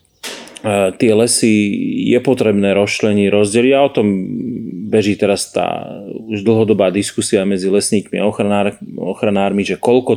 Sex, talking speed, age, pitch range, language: male, 130 wpm, 30-49, 100-115 Hz, Slovak